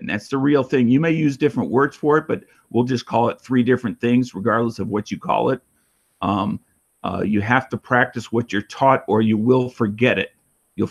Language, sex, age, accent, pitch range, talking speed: English, male, 50-69, American, 110-130 Hz, 225 wpm